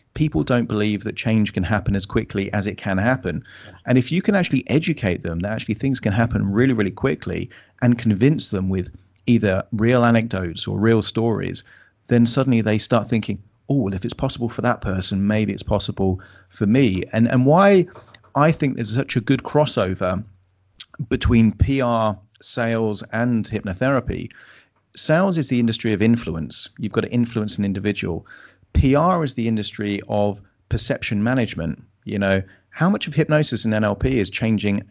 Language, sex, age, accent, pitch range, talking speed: English, male, 40-59, British, 100-125 Hz, 170 wpm